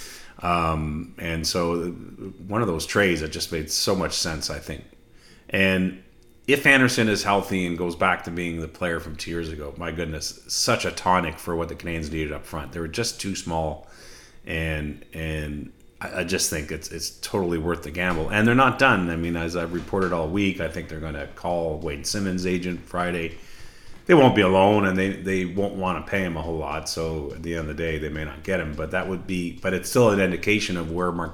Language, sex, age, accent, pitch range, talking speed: English, male, 30-49, American, 80-95 Hz, 230 wpm